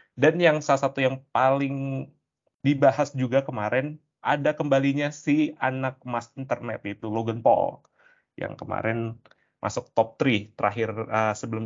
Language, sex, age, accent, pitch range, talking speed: Indonesian, male, 20-39, native, 110-135 Hz, 135 wpm